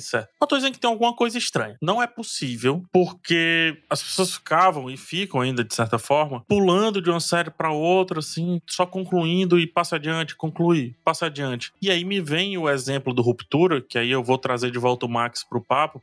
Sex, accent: male, Brazilian